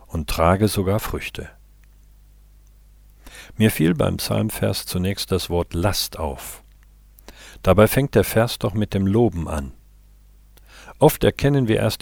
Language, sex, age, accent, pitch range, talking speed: German, male, 50-69, German, 85-110 Hz, 130 wpm